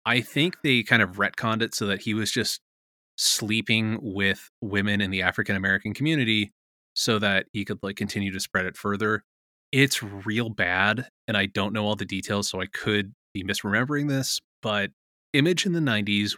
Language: English